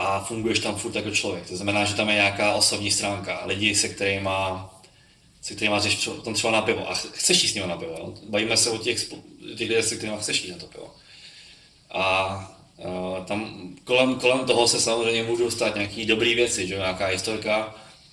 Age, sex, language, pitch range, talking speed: 20-39, male, Czech, 105-115 Hz, 185 wpm